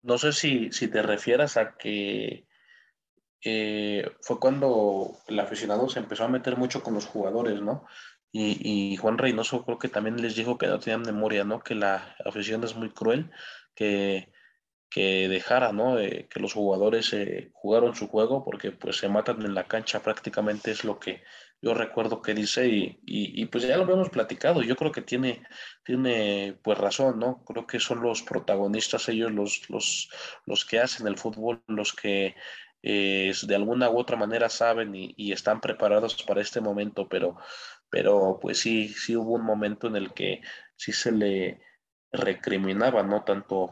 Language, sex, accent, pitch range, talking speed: Spanish, male, Mexican, 100-120 Hz, 180 wpm